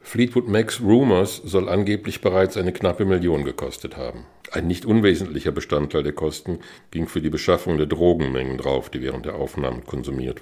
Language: German